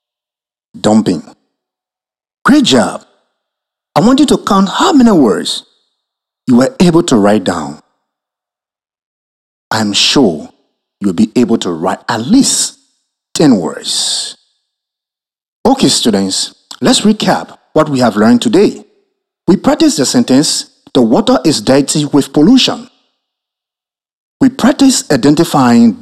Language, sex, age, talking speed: English, male, 50-69, 115 wpm